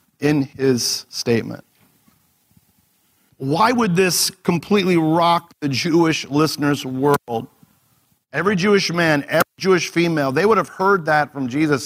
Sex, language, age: male, English, 50-69